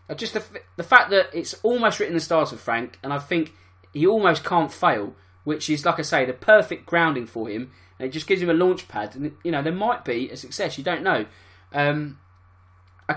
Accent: British